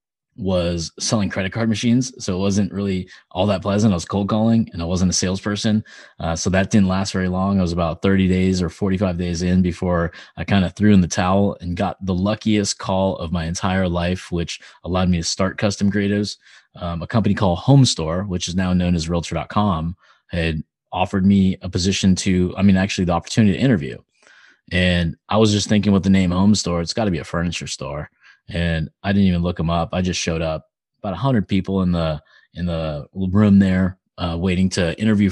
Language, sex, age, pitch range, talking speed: English, male, 20-39, 85-100 Hz, 215 wpm